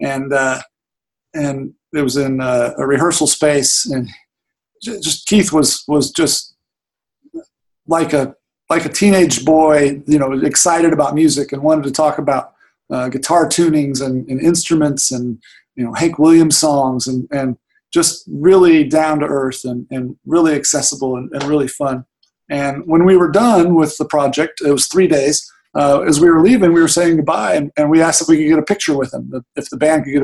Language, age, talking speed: English, 40-59, 195 wpm